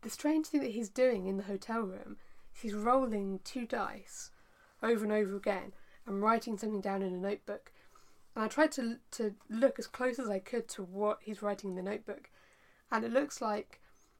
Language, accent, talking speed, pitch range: English, British, 200 wpm, 195-235 Hz